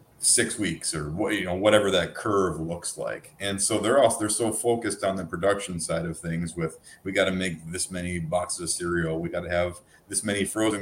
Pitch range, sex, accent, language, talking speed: 85-105 Hz, male, American, English, 225 wpm